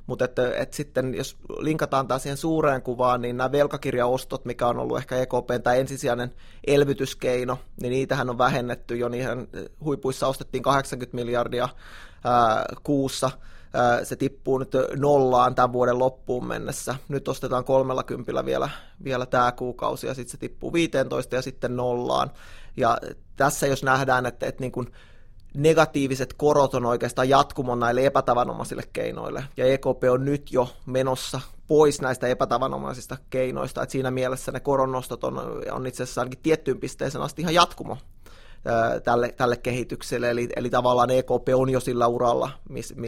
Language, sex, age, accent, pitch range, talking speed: Finnish, male, 20-39, native, 125-135 Hz, 155 wpm